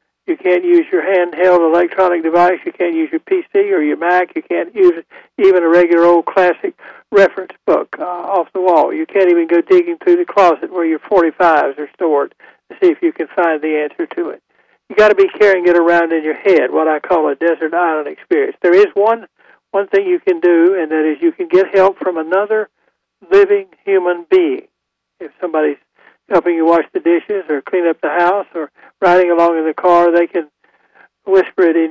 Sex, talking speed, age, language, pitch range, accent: male, 210 wpm, 60-79, English, 165-205 Hz, American